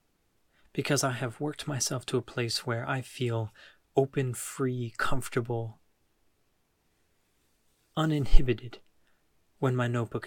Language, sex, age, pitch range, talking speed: English, male, 20-39, 115-135 Hz, 105 wpm